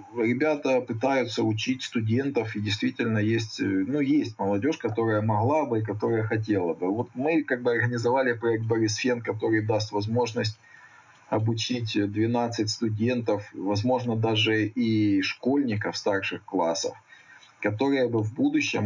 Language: Russian